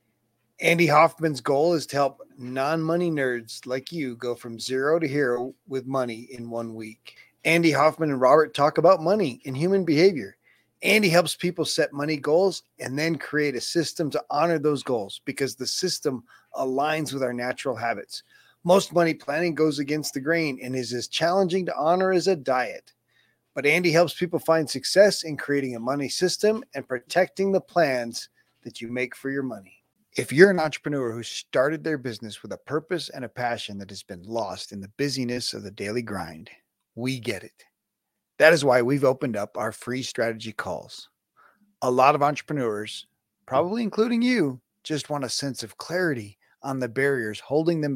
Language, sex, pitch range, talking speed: English, male, 120-160 Hz, 185 wpm